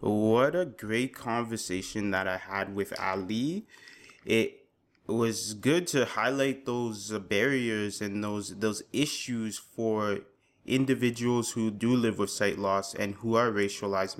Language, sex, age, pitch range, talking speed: English, male, 20-39, 100-120 Hz, 135 wpm